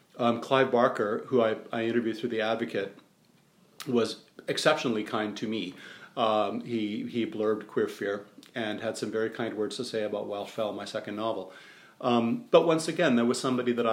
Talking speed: 185 wpm